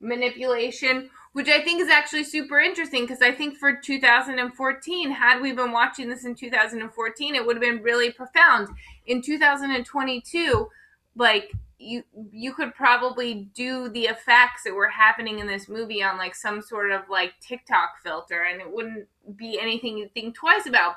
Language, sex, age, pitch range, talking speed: English, female, 20-39, 190-255 Hz, 170 wpm